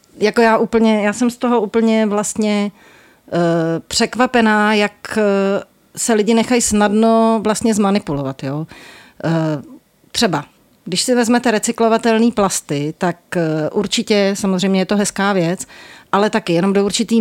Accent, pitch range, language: native, 170-215 Hz, Czech